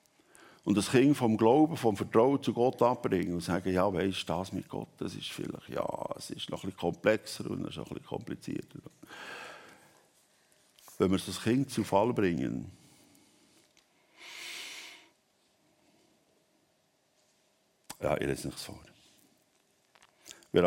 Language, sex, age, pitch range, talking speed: German, male, 60-79, 85-110 Hz, 140 wpm